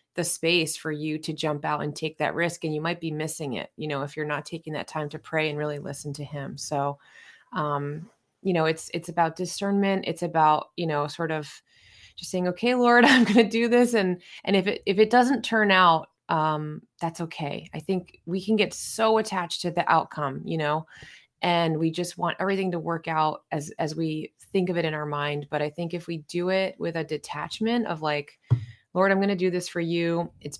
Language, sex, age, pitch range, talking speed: English, female, 20-39, 150-180 Hz, 230 wpm